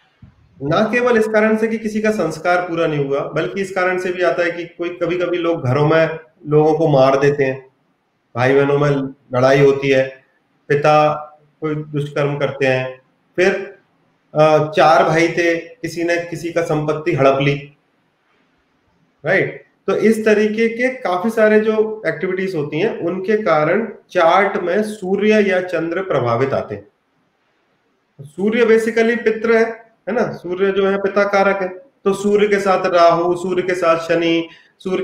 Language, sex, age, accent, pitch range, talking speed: Hindi, male, 30-49, native, 155-195 Hz, 165 wpm